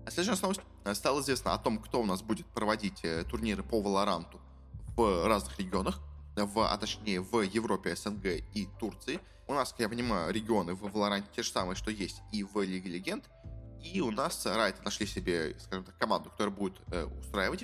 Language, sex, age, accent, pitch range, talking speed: Russian, male, 20-39, native, 95-115 Hz, 185 wpm